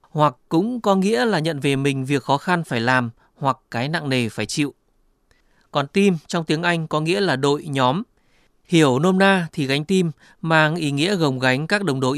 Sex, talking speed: male, 210 wpm